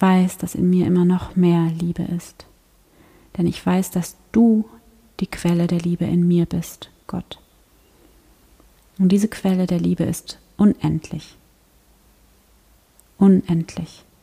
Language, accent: German, German